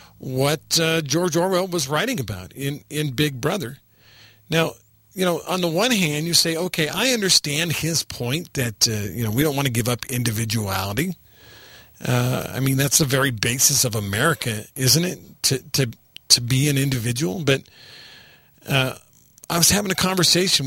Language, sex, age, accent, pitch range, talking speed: English, male, 50-69, American, 130-180 Hz, 175 wpm